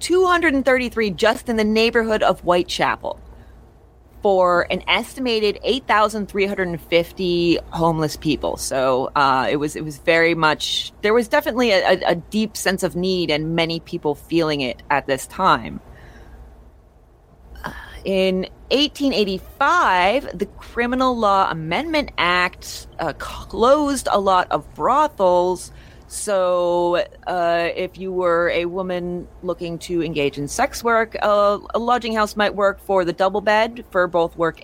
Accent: American